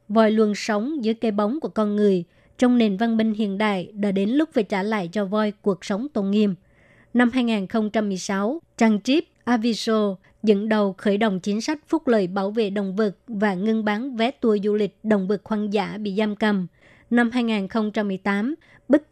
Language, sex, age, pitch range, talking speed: Vietnamese, male, 20-39, 205-230 Hz, 190 wpm